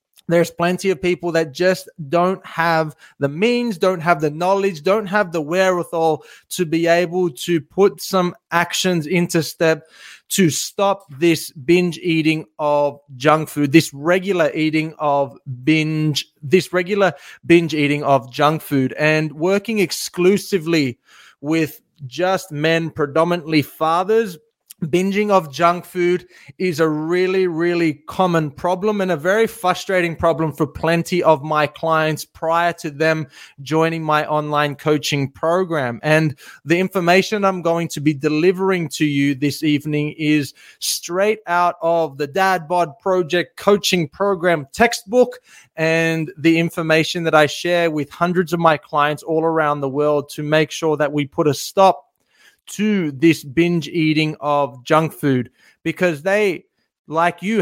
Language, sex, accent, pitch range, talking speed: English, male, Australian, 150-180 Hz, 145 wpm